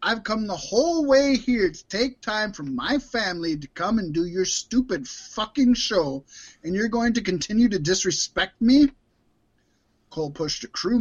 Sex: male